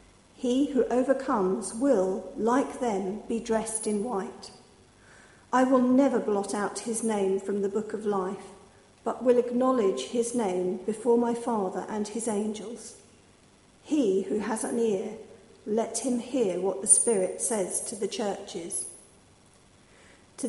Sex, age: female, 50-69